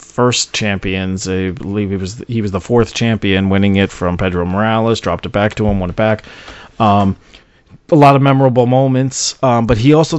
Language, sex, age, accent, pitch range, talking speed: English, male, 30-49, American, 100-125 Hz, 200 wpm